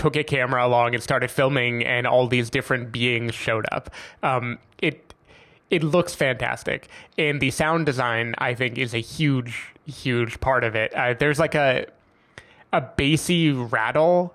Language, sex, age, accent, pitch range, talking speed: English, male, 20-39, American, 120-145 Hz, 165 wpm